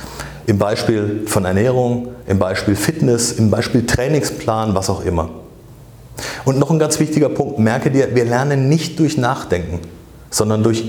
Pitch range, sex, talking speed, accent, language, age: 100-125 Hz, male, 155 wpm, German, German, 40-59